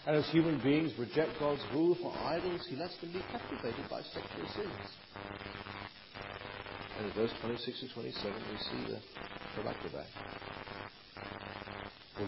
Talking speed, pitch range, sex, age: 140 wpm, 100-120 Hz, male, 50-69